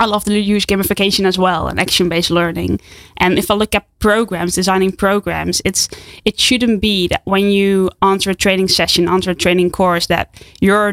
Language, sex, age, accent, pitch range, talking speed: English, female, 10-29, Dutch, 180-195 Hz, 190 wpm